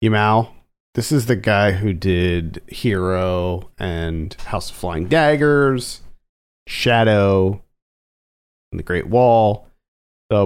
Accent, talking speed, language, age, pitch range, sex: American, 110 wpm, English, 40-59, 95-125 Hz, male